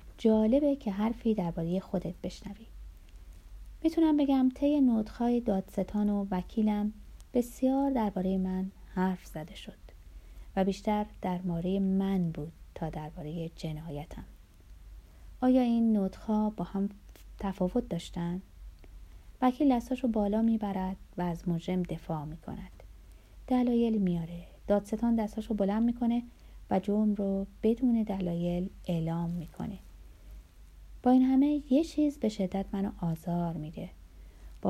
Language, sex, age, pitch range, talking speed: Persian, female, 30-49, 165-225 Hz, 120 wpm